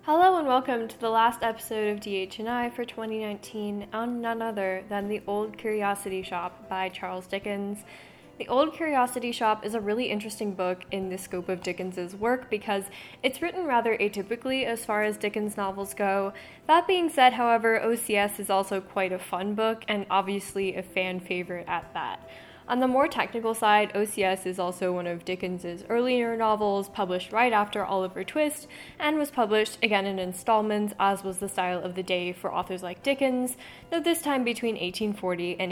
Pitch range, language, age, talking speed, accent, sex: 190-235 Hz, English, 10-29, 180 wpm, American, female